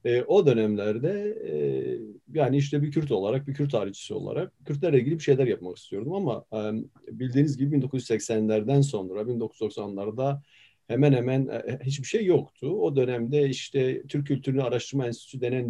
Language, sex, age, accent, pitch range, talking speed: Turkish, male, 40-59, native, 120-170 Hz, 140 wpm